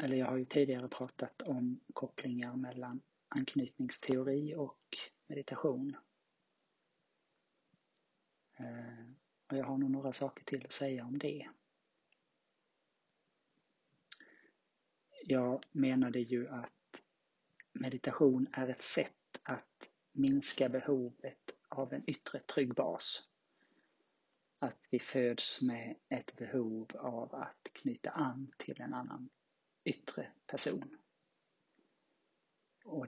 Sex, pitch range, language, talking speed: male, 125-140 Hz, Swedish, 100 wpm